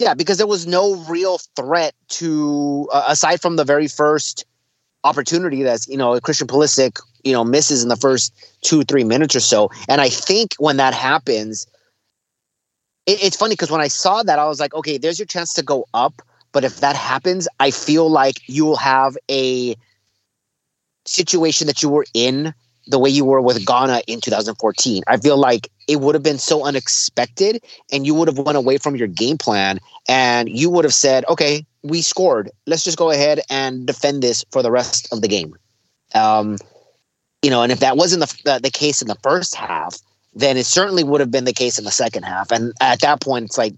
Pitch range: 125-160 Hz